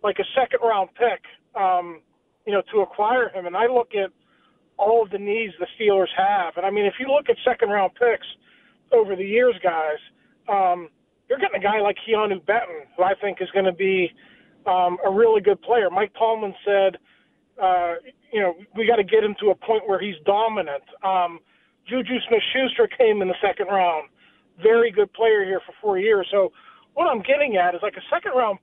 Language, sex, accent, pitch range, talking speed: English, male, American, 190-250 Hz, 200 wpm